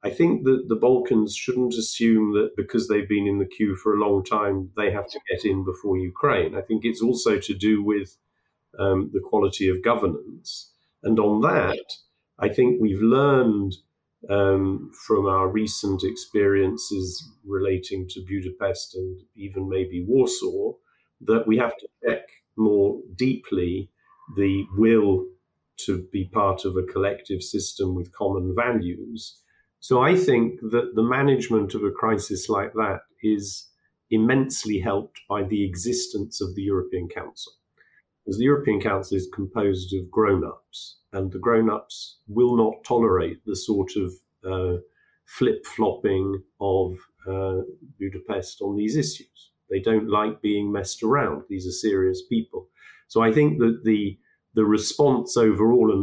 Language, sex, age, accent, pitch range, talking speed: English, male, 40-59, British, 95-115 Hz, 150 wpm